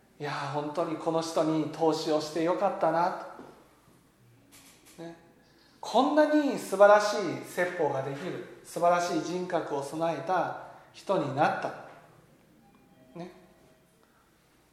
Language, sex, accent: Japanese, male, native